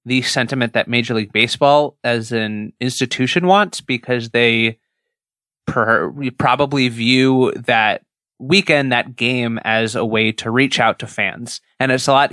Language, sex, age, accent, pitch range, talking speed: English, male, 20-39, American, 115-135 Hz, 145 wpm